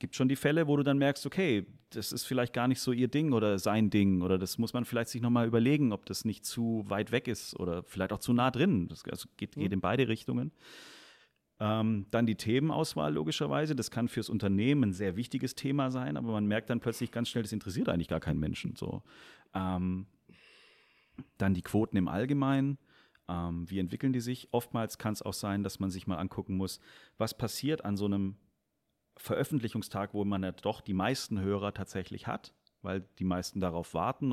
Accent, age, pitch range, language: German, 40-59, 95-120 Hz, German